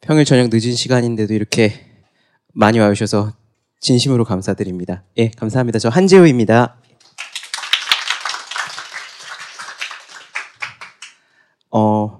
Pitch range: 110-145 Hz